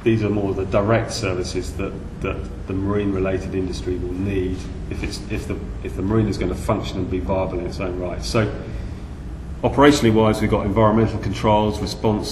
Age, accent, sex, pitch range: 30-49, British, male, 95-115 Hz